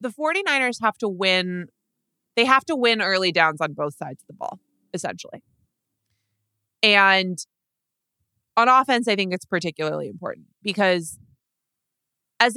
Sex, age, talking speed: female, 20-39, 135 wpm